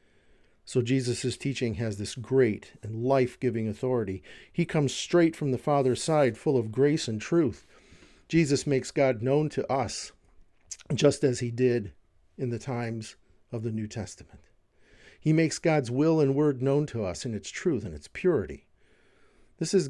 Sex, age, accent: male, 50-69, American